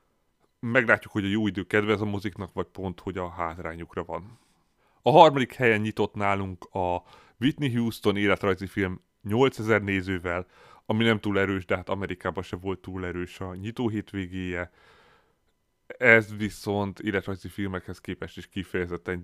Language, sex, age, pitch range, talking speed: Hungarian, male, 30-49, 90-105 Hz, 145 wpm